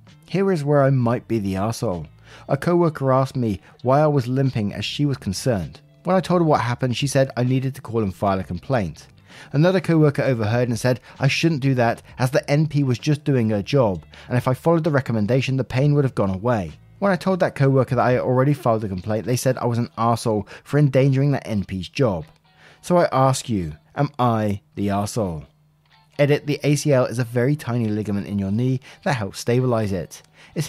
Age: 20-39